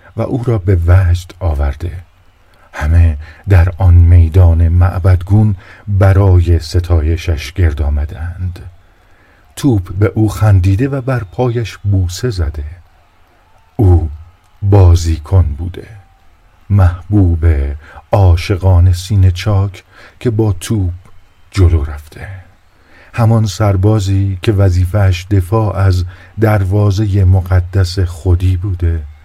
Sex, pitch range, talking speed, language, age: male, 90-105 Hz, 95 wpm, Persian, 50-69